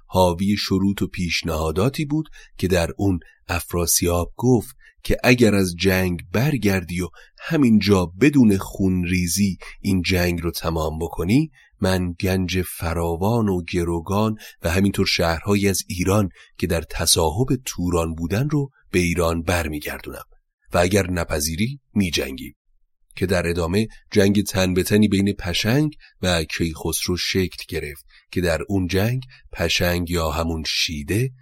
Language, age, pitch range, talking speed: Persian, 30-49, 85-100 Hz, 130 wpm